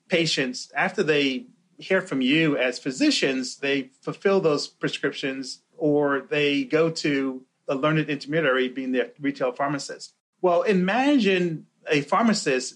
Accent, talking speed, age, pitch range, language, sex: American, 125 wpm, 30-49, 140-185 Hz, English, male